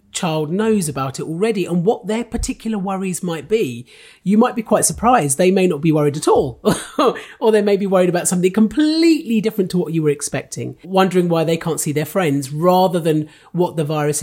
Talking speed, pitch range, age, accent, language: 210 wpm, 145-190 Hz, 40-59, British, English